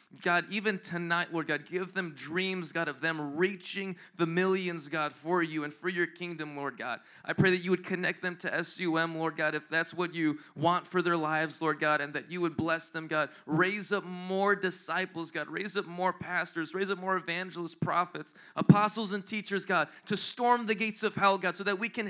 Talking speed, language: 215 wpm, English